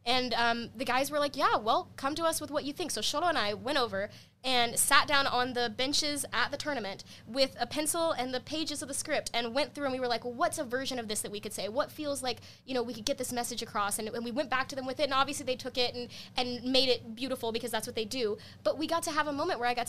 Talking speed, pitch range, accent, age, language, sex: 300 wpm, 225-285 Hz, American, 20-39, English, female